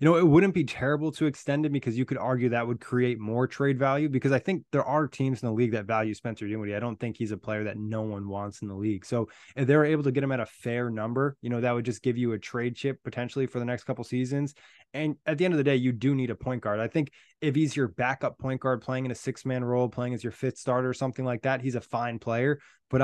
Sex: male